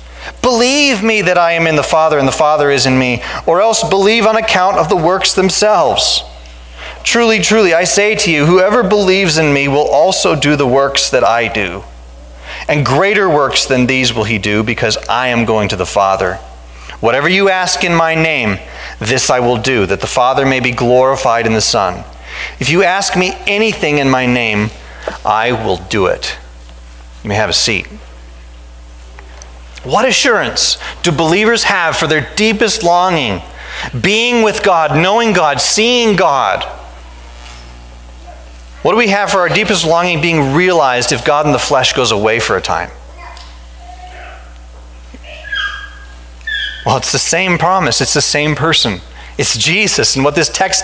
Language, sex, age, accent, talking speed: English, male, 30-49, American, 170 wpm